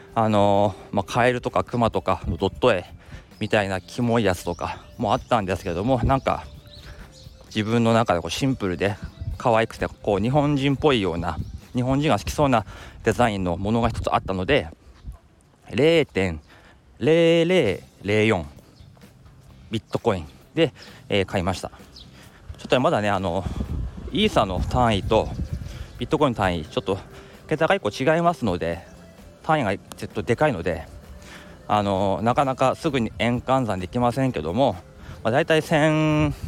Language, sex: Japanese, male